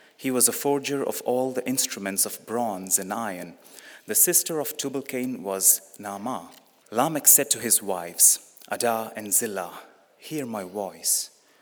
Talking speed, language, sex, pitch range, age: 150 wpm, English, male, 105-130 Hz, 30-49